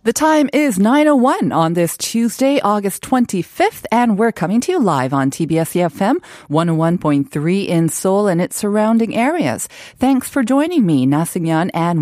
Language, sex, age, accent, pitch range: Korean, female, 40-59, American, 145-220 Hz